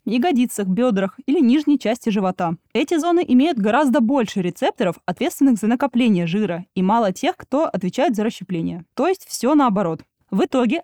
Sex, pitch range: female, 190-265 Hz